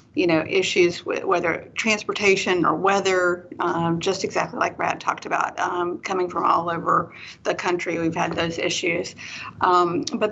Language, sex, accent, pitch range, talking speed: English, female, American, 175-210 Hz, 165 wpm